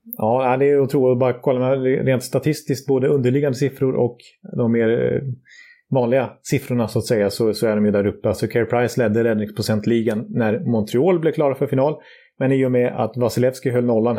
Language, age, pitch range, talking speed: Swedish, 30-49, 110-135 Hz, 200 wpm